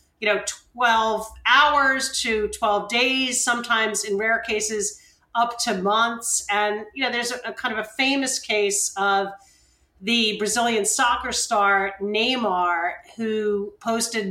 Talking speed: 140 wpm